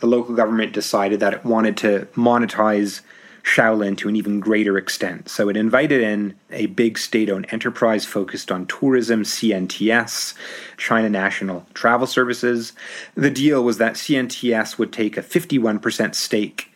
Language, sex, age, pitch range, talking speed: English, male, 30-49, 100-125 Hz, 145 wpm